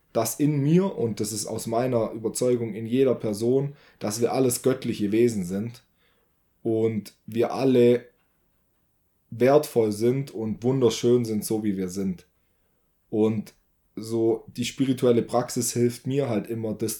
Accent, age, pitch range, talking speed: German, 20-39, 105-120 Hz, 140 wpm